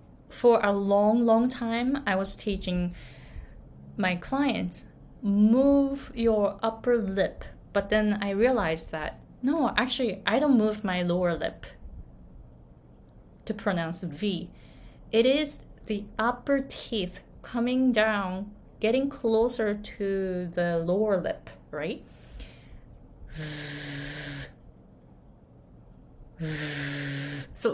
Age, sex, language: 20-39, female, Japanese